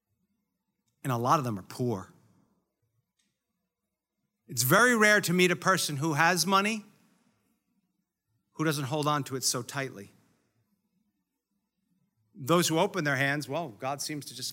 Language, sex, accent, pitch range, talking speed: English, male, American, 145-215 Hz, 145 wpm